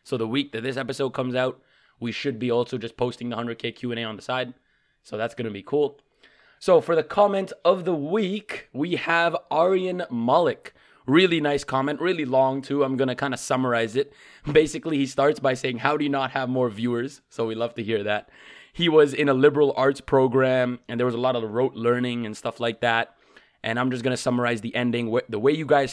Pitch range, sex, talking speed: 120-145 Hz, male, 230 wpm